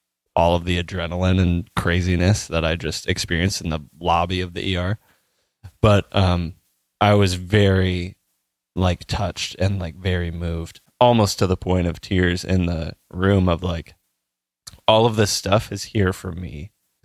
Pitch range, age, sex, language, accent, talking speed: 80-95 Hz, 20-39, male, English, American, 160 wpm